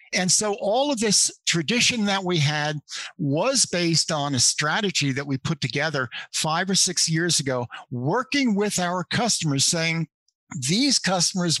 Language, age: English, 50-69